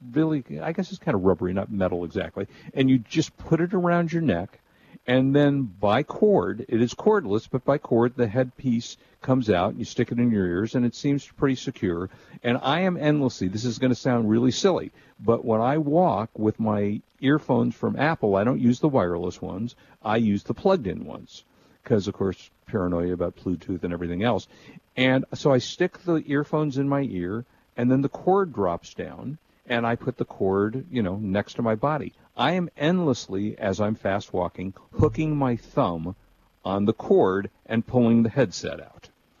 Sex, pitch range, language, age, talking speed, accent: male, 100-135 Hz, English, 50-69, 195 wpm, American